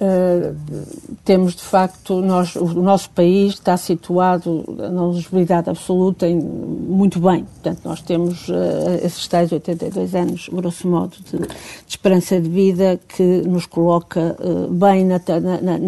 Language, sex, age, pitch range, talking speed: Portuguese, female, 50-69, 175-205 Hz, 150 wpm